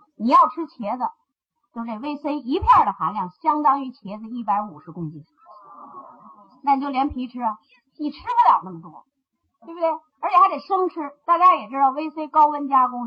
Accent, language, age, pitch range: native, Chinese, 30-49, 230-320 Hz